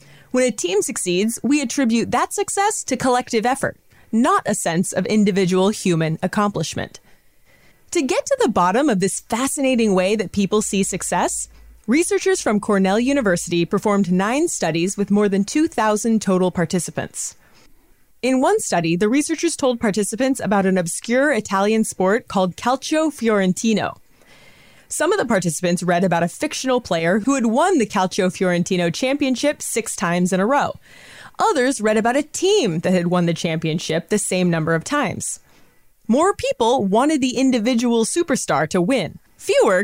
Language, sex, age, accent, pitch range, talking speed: English, female, 30-49, American, 185-275 Hz, 155 wpm